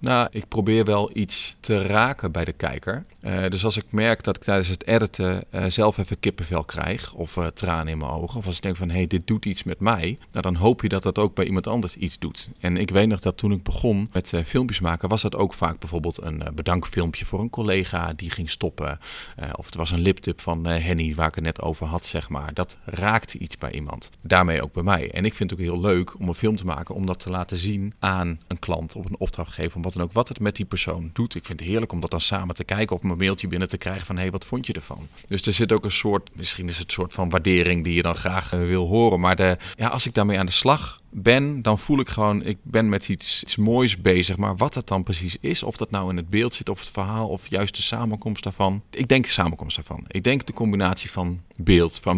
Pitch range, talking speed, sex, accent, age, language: 90-105 Hz, 270 wpm, male, Dutch, 40-59, Dutch